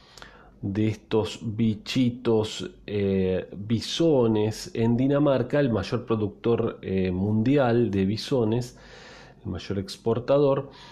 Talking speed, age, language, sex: 95 wpm, 40-59, Spanish, male